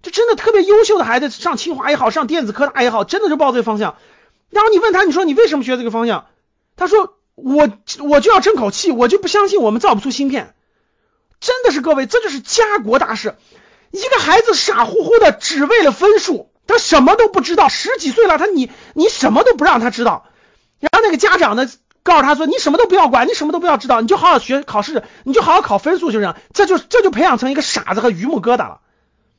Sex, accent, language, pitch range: male, native, Chinese, 265-415 Hz